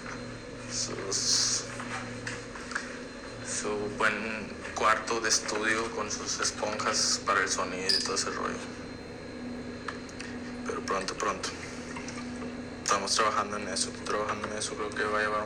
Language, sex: Spanish, male